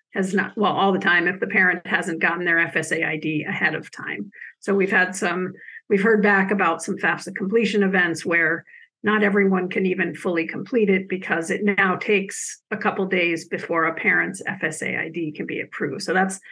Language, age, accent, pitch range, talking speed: English, 50-69, American, 180-210 Hz, 195 wpm